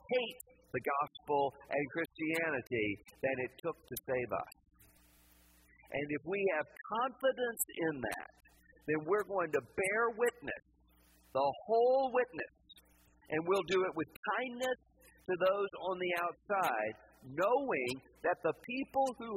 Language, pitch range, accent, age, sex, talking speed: English, 120-205 Hz, American, 50-69, male, 135 wpm